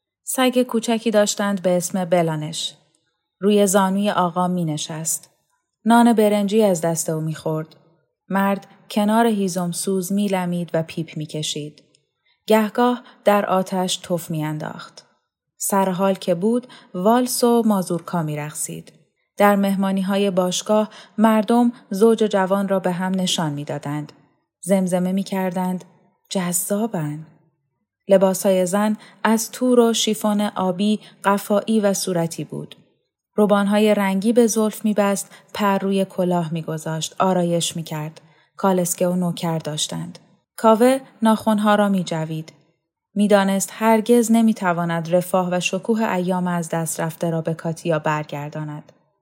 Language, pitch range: Persian, 165-210 Hz